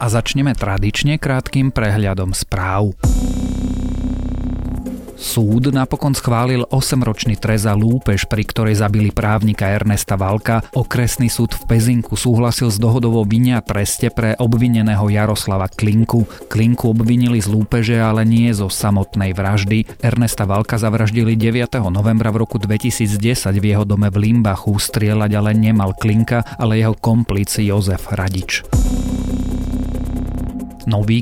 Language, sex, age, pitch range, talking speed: Slovak, male, 40-59, 100-115 Hz, 125 wpm